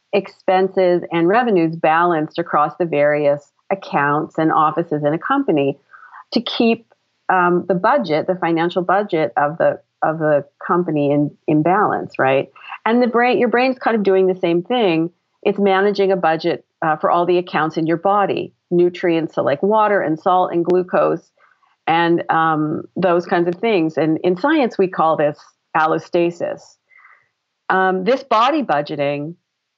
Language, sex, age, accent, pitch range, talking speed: English, female, 40-59, American, 160-195 Hz, 155 wpm